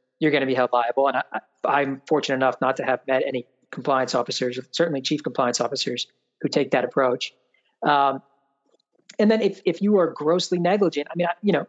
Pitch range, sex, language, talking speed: 130-155 Hz, male, English, 210 wpm